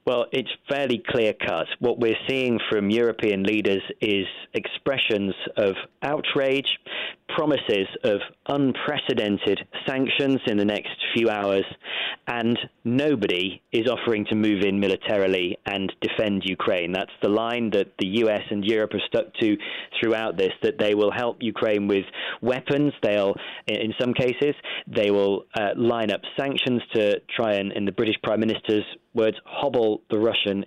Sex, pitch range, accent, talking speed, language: male, 105-120 Hz, British, 150 wpm, English